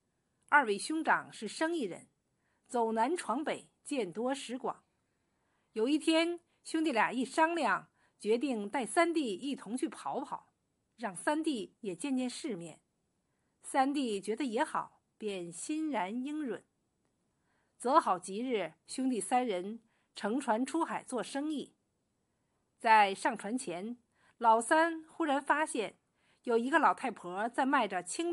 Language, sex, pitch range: Chinese, female, 215-310 Hz